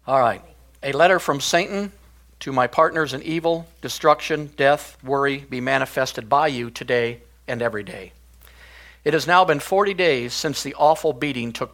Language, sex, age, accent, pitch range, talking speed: English, male, 50-69, American, 120-155 Hz, 170 wpm